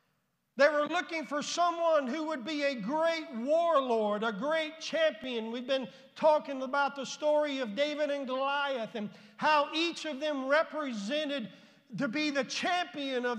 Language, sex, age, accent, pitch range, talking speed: English, male, 50-69, American, 235-300 Hz, 155 wpm